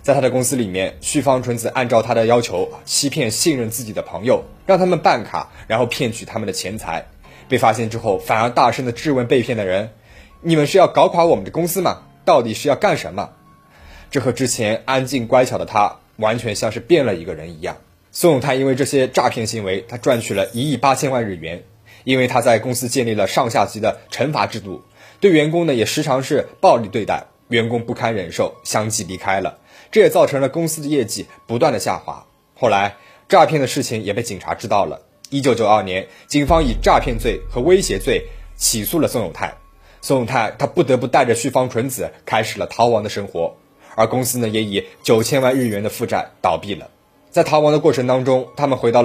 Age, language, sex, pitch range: 20-39, Chinese, male, 110-145 Hz